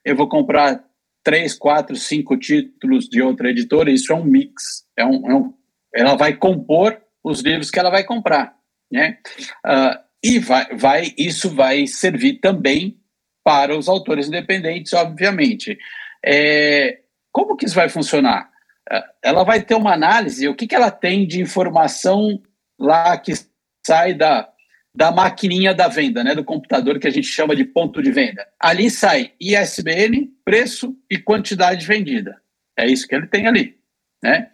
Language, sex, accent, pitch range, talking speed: Portuguese, male, Brazilian, 160-250 Hz, 145 wpm